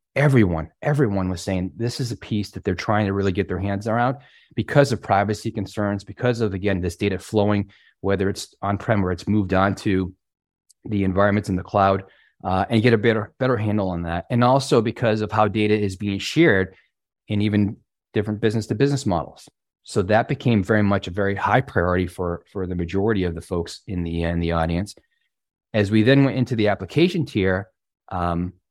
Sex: male